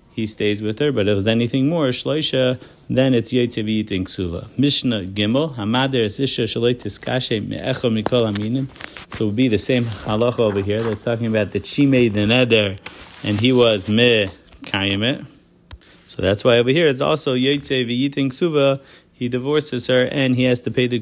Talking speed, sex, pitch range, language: 190 wpm, male, 110-130 Hz, English